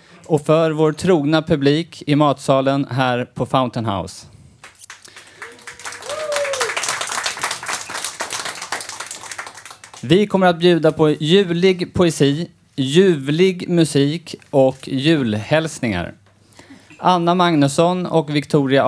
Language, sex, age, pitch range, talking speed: Swedish, male, 30-49, 120-160 Hz, 85 wpm